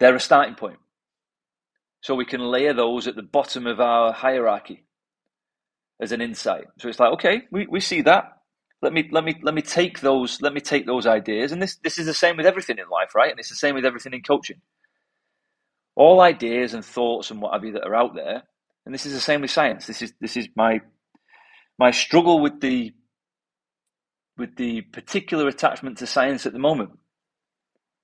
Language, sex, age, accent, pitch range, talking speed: English, male, 30-49, British, 120-155 Hz, 205 wpm